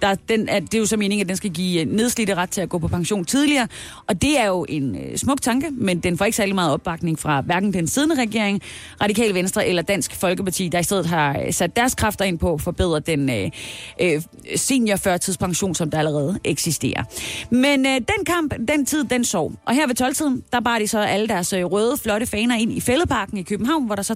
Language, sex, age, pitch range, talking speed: Danish, female, 30-49, 170-245 Hz, 220 wpm